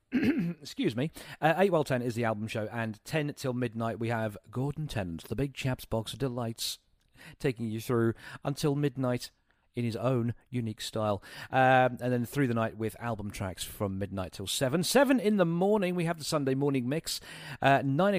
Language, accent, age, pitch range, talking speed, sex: English, British, 40-59, 110-150 Hz, 195 wpm, male